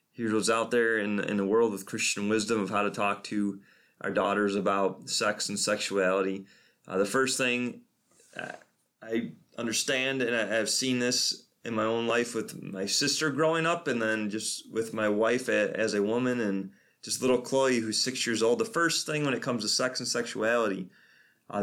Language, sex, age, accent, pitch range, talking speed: English, male, 20-39, American, 105-125 Hz, 195 wpm